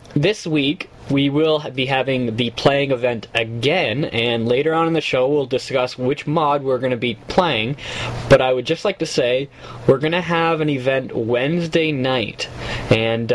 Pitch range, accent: 115-145 Hz, American